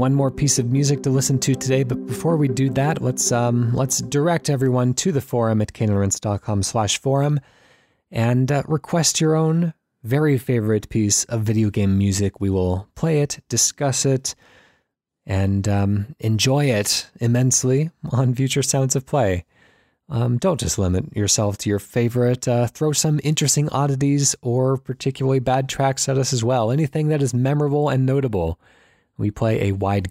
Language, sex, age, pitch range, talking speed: English, male, 20-39, 105-135 Hz, 170 wpm